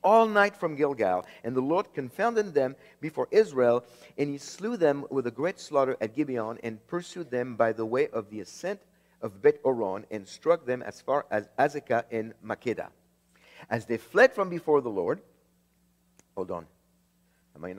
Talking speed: 180 wpm